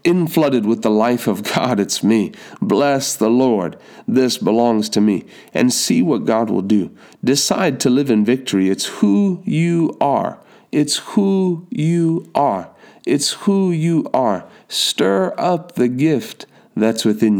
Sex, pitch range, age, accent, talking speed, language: male, 115-170 Hz, 40-59, American, 155 wpm, English